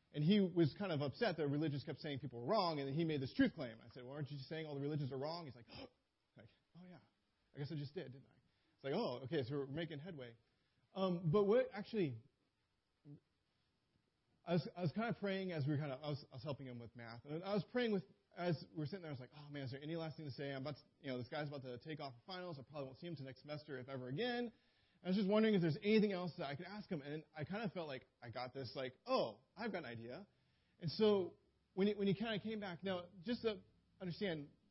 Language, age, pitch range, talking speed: English, 30-49, 130-185 Hz, 285 wpm